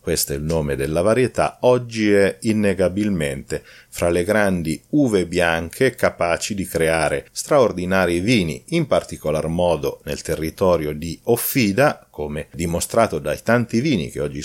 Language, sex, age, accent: Italian, male, 40-59, native